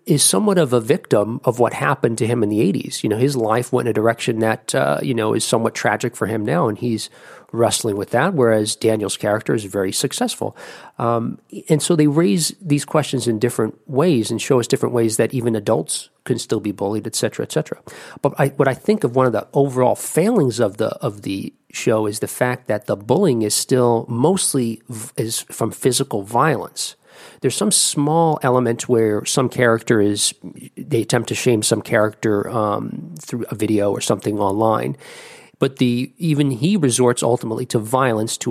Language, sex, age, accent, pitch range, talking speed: English, male, 40-59, American, 110-135 Hz, 200 wpm